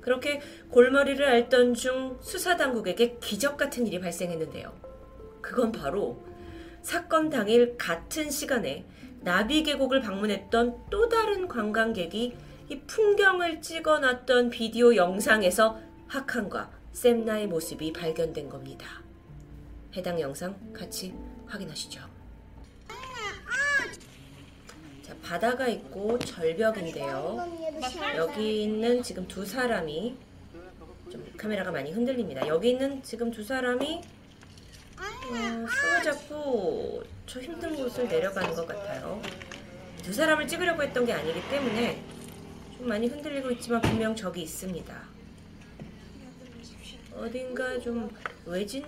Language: Korean